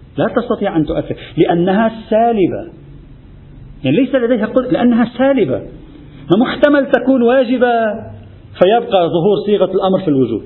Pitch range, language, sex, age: 150-245 Hz, Arabic, male, 50-69